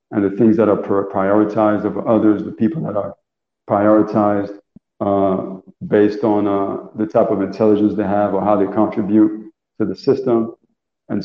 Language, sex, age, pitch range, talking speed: English, male, 50-69, 100-110 Hz, 165 wpm